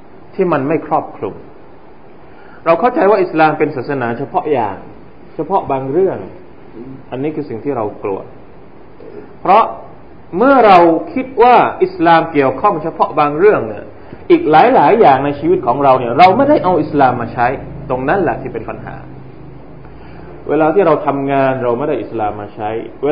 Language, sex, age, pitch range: Thai, male, 20-39, 135-185 Hz